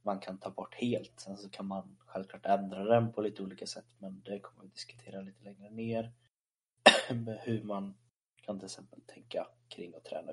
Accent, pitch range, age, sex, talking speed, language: native, 95-115 Hz, 20-39, male, 190 wpm, Swedish